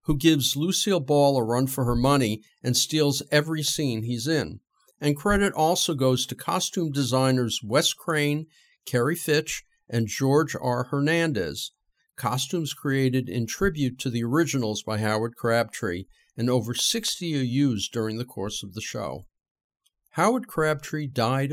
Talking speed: 150 wpm